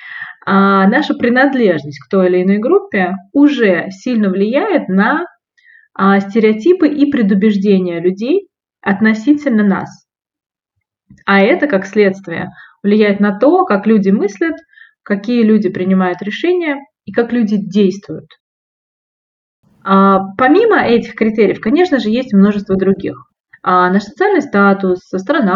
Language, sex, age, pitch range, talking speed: Russian, female, 20-39, 190-275 Hz, 110 wpm